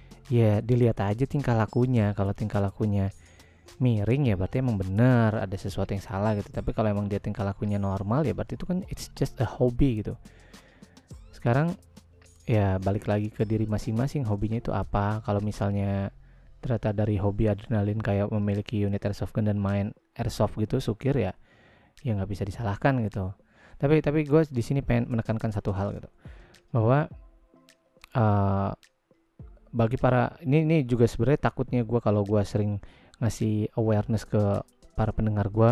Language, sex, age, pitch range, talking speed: Indonesian, male, 20-39, 100-125 Hz, 160 wpm